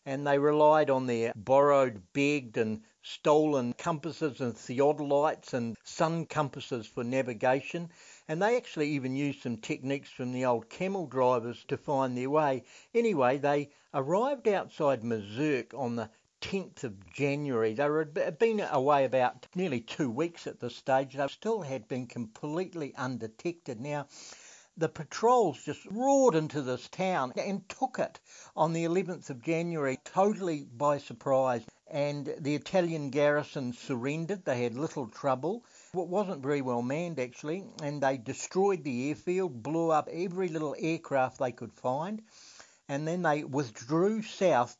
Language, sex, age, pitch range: English, male, 60-79, 125-165 Hz